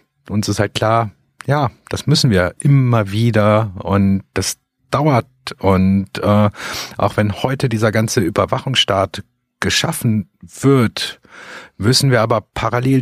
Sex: male